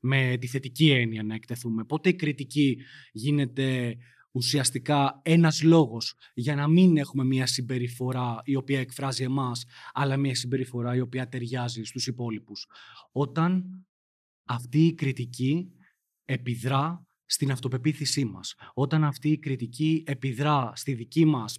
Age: 20-39